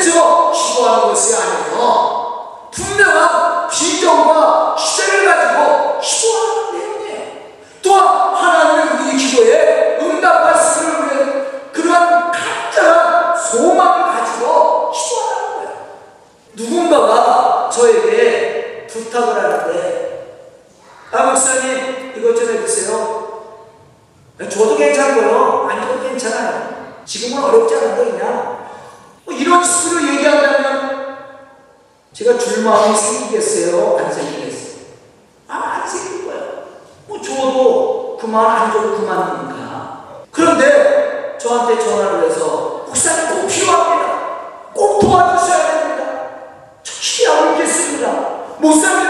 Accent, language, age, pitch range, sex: native, Korean, 40-59, 275-445 Hz, male